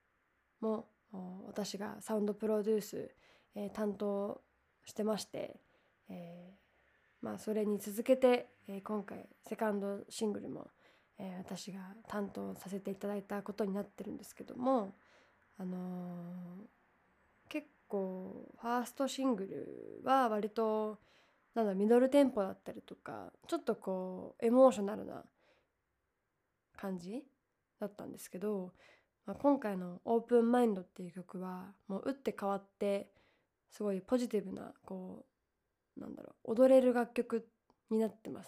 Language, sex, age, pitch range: Japanese, female, 20-39, 195-245 Hz